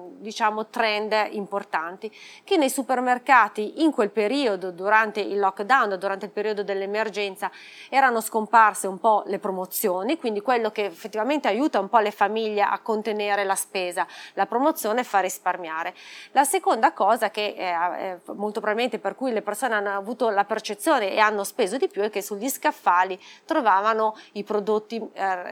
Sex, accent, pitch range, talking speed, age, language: female, native, 200-240 Hz, 160 wpm, 30-49, Italian